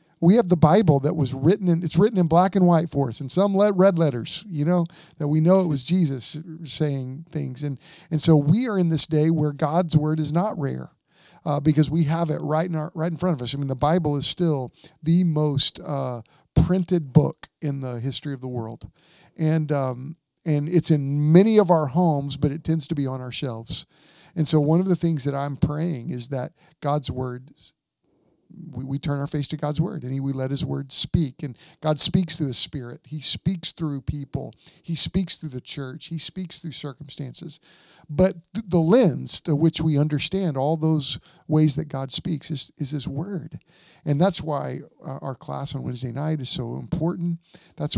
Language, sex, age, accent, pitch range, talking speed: English, male, 50-69, American, 140-170 Hz, 215 wpm